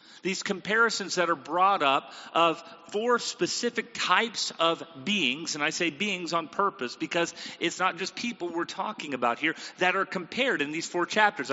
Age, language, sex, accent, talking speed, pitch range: 40-59, English, male, American, 175 wpm, 170-220 Hz